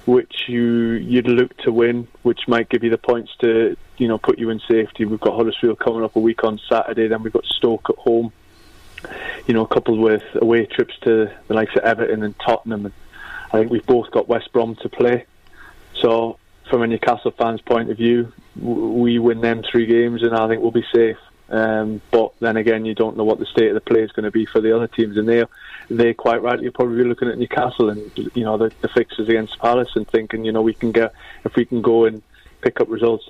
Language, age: English, 20-39